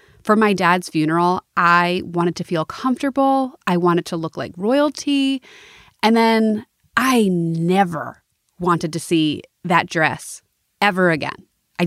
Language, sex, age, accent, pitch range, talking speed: English, female, 30-49, American, 165-205 Hz, 135 wpm